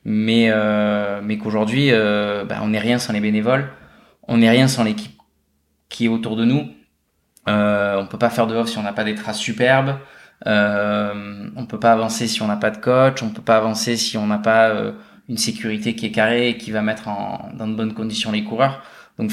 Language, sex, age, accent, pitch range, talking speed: French, male, 20-39, French, 105-115 Hz, 225 wpm